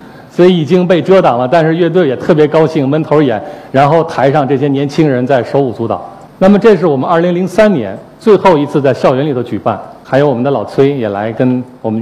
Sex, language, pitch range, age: male, Chinese, 120-155 Hz, 50-69